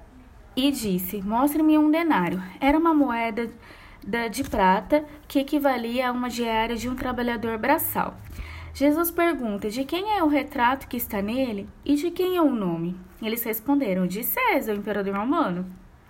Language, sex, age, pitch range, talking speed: Portuguese, female, 20-39, 215-280 Hz, 155 wpm